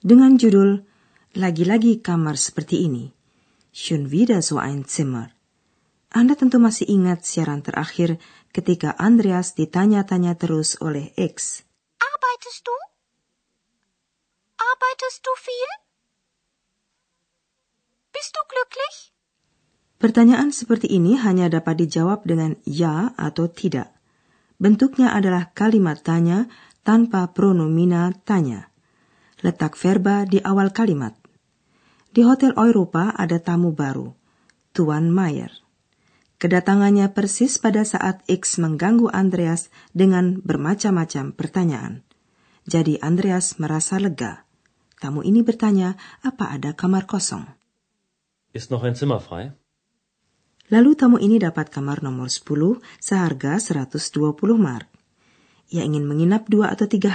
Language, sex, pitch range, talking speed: Indonesian, female, 160-220 Hz, 100 wpm